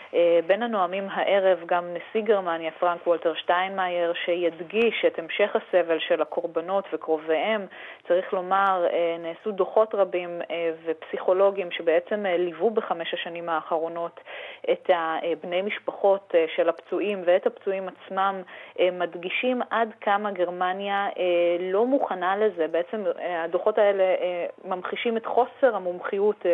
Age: 30-49